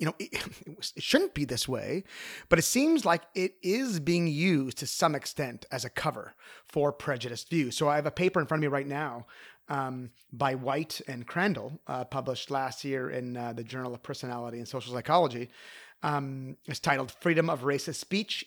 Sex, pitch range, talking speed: male, 135-175 Hz, 200 wpm